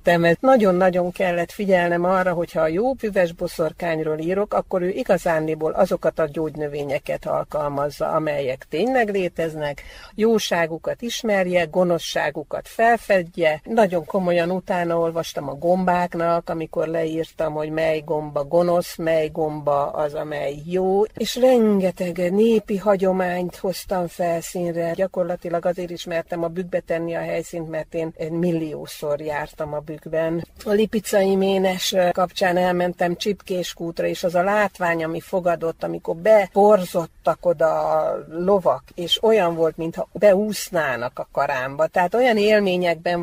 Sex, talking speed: female, 125 wpm